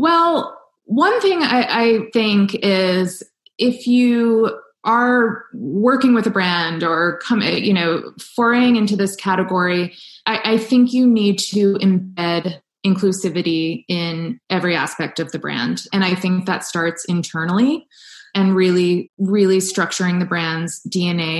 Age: 20-39